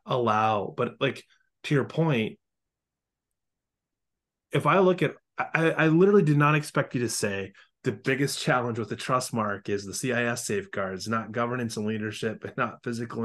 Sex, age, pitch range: male, 20-39, 115-145 Hz